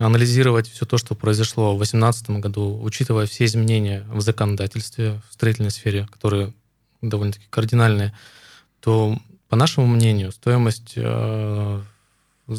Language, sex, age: Russian, male, 20-39